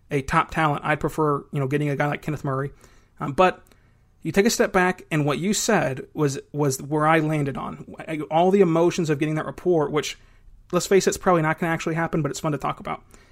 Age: 30-49